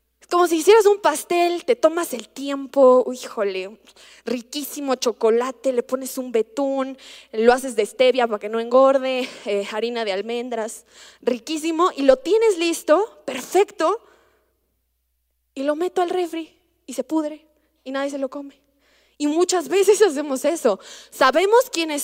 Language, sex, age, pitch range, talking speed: Spanish, female, 20-39, 245-315 Hz, 150 wpm